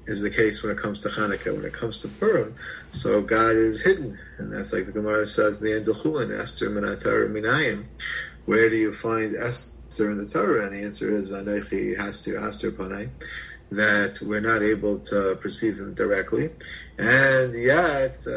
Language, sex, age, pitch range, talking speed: English, male, 40-59, 95-110 Hz, 160 wpm